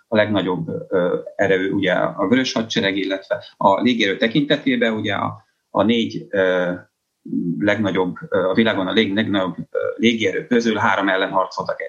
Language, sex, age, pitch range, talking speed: Hungarian, male, 30-49, 95-130 Hz, 120 wpm